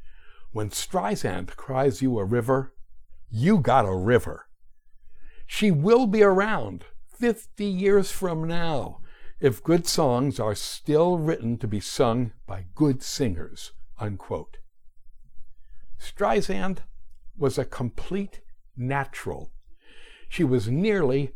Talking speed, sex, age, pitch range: 105 wpm, male, 60-79, 100-170 Hz